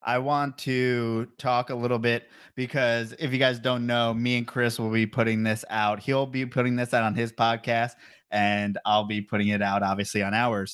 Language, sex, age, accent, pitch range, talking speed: English, male, 20-39, American, 105-125 Hz, 210 wpm